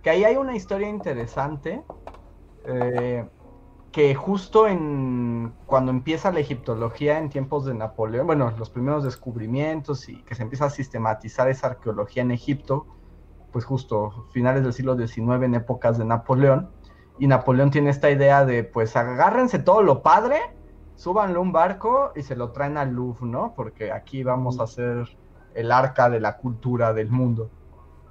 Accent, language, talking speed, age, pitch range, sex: Mexican, Spanish, 160 wpm, 30-49, 115-160 Hz, male